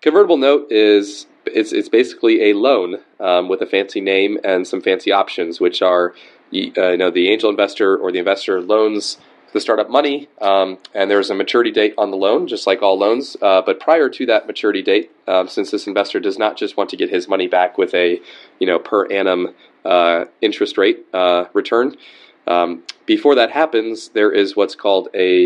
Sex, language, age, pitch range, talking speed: male, English, 30-49, 90-140 Hz, 205 wpm